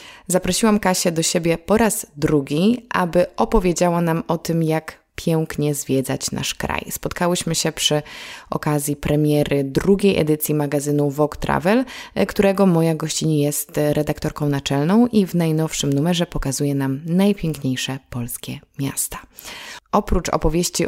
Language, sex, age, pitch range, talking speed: Polish, female, 20-39, 150-185 Hz, 125 wpm